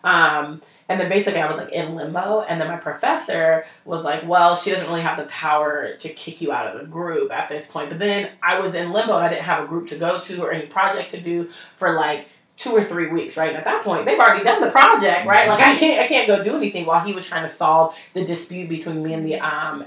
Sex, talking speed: female, 265 wpm